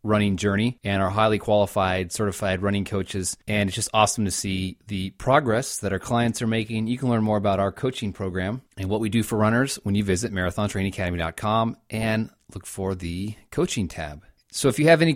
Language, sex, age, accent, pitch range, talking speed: English, male, 30-49, American, 95-115 Hz, 200 wpm